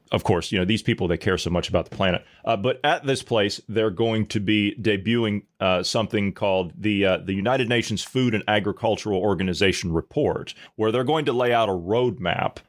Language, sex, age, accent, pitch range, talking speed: English, male, 30-49, American, 95-115 Hz, 210 wpm